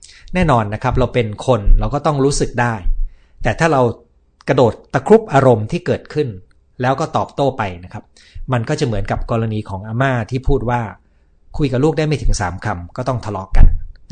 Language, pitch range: Thai, 95-140 Hz